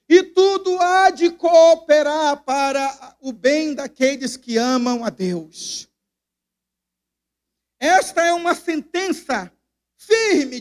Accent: Brazilian